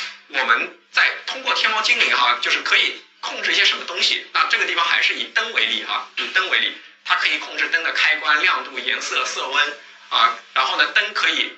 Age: 20-39